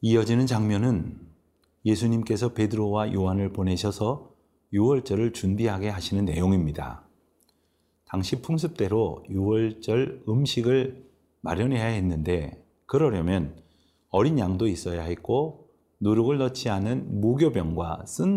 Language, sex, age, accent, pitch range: Korean, male, 40-59, native, 90-115 Hz